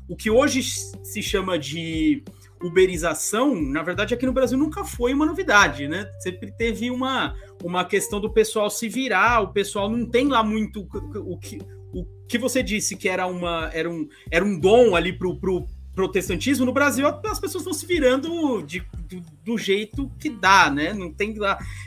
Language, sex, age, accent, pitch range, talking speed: Portuguese, male, 30-49, Brazilian, 160-240 Hz, 170 wpm